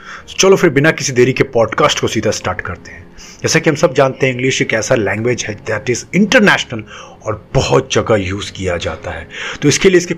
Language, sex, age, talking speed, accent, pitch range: Hindi, male, 30-49, 220 wpm, native, 120-155 Hz